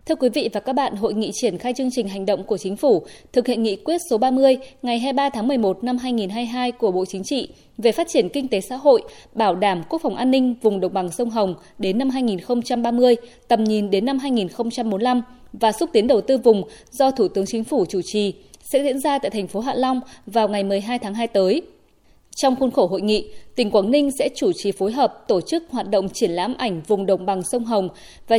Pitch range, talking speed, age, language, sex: 205-265 Hz, 235 wpm, 20-39, Vietnamese, female